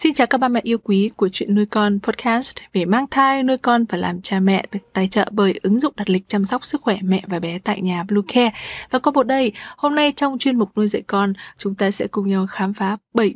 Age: 20-39